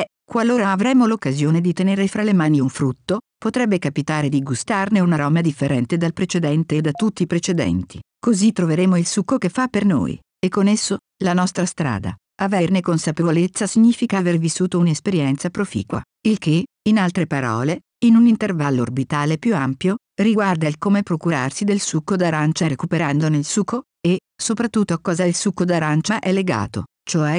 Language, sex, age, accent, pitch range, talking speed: Italian, female, 50-69, native, 150-195 Hz, 165 wpm